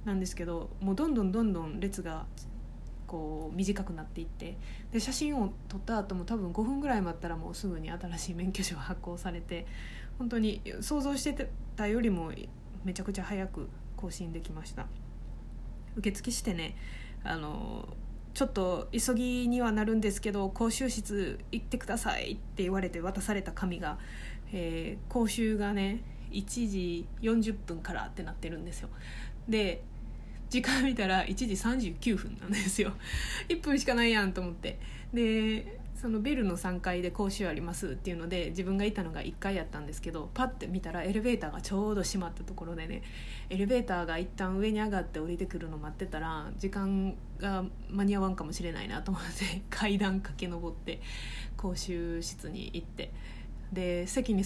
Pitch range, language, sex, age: 175-215 Hz, Japanese, female, 20-39